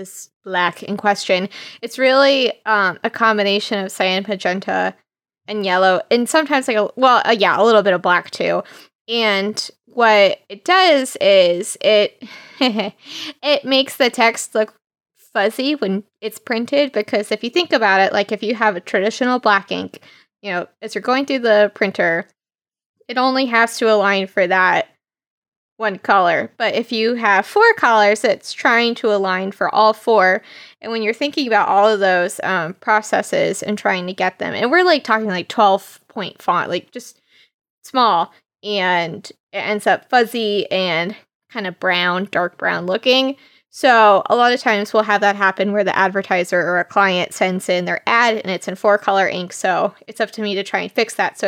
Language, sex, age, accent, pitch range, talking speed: English, female, 20-39, American, 195-240 Hz, 185 wpm